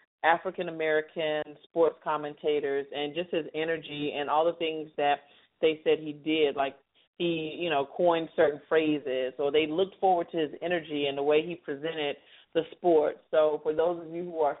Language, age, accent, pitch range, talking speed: English, 40-59, American, 150-175 Hz, 180 wpm